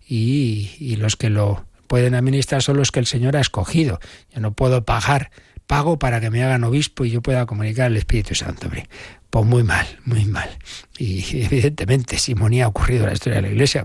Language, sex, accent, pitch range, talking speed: Spanish, male, Spanish, 110-140 Hz, 210 wpm